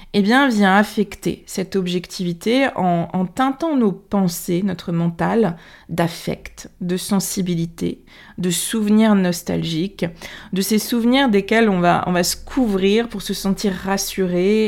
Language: French